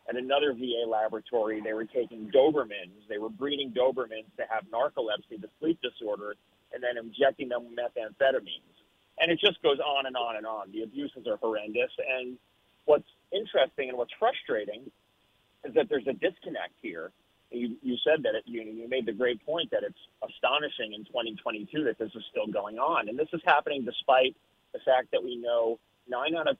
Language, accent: English, American